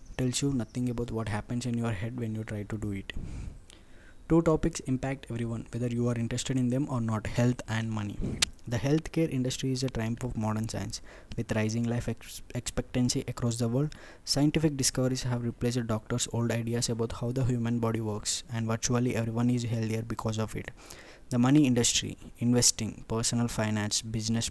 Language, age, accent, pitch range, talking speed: Telugu, 20-39, native, 115-130 Hz, 185 wpm